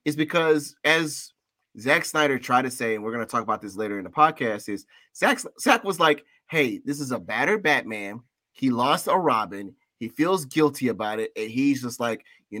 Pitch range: 120-160 Hz